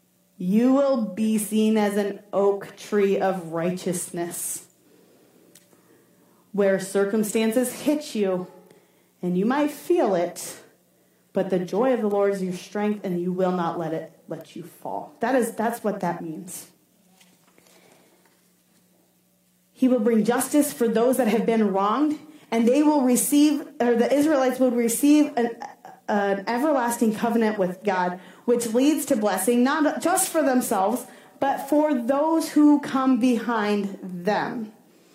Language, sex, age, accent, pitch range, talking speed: English, female, 30-49, American, 185-255 Hz, 140 wpm